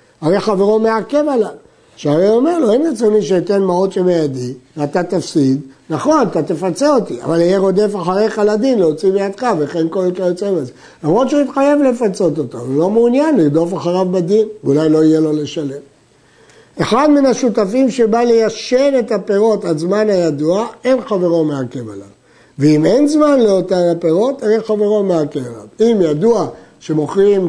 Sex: male